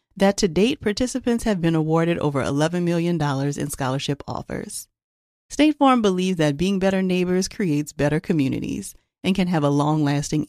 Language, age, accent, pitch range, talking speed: English, 40-59, American, 150-235 Hz, 160 wpm